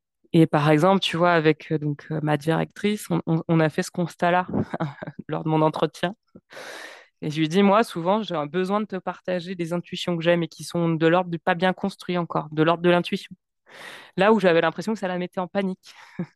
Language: French